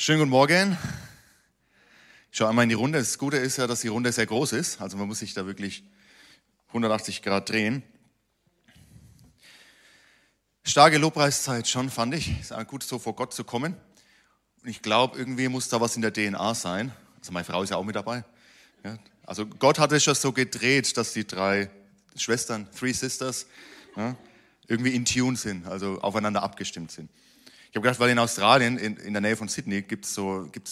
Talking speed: 190 wpm